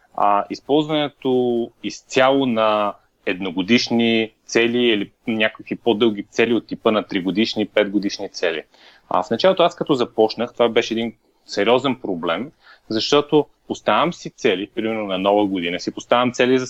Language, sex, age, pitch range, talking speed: Bulgarian, male, 30-49, 115-160 Hz, 140 wpm